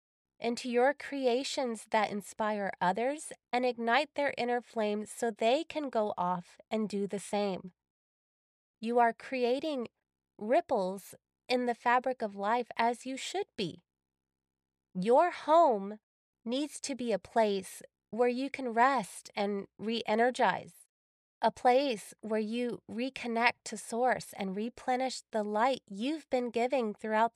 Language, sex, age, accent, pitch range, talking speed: English, female, 20-39, American, 200-250 Hz, 135 wpm